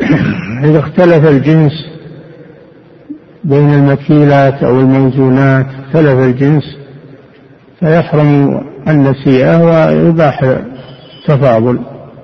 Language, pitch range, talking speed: Arabic, 130-150 Hz, 65 wpm